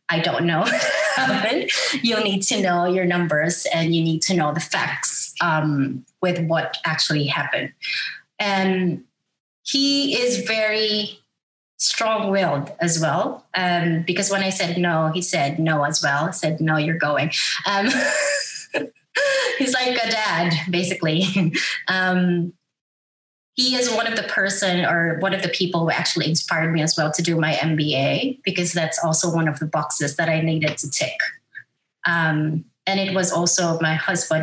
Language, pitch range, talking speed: English, 160-195 Hz, 160 wpm